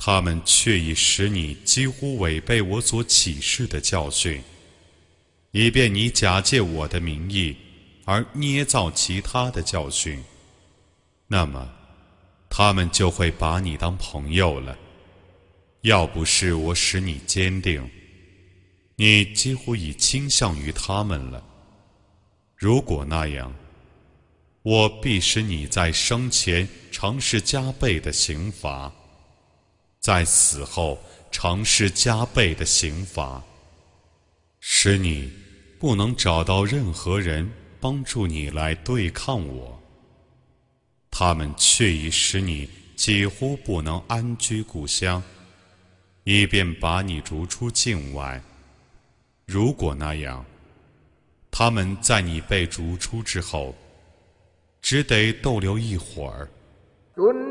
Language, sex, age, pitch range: Arabic, male, 30-49, 80-105 Hz